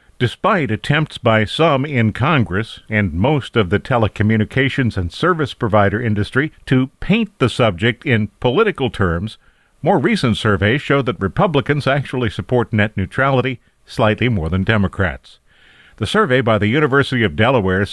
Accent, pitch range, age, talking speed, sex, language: American, 105-140 Hz, 50-69, 145 wpm, male, English